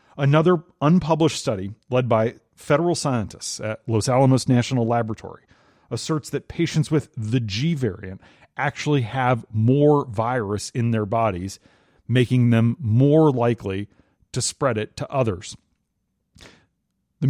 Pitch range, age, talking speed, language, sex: 110-135 Hz, 40-59, 125 wpm, English, male